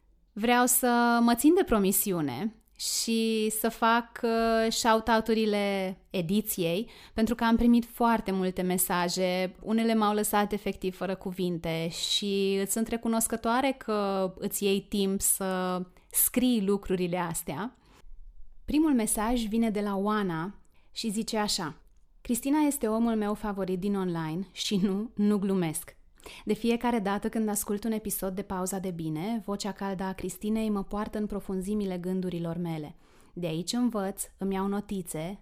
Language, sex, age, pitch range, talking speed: Romanian, female, 30-49, 185-225 Hz, 140 wpm